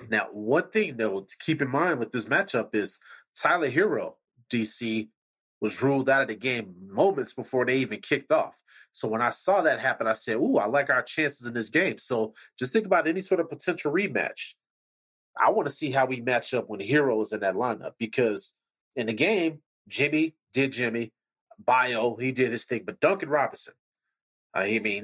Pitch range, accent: 125-180 Hz, American